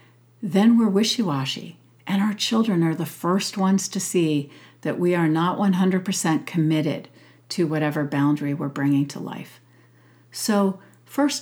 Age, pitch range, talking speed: 60-79, 150-205 Hz, 145 wpm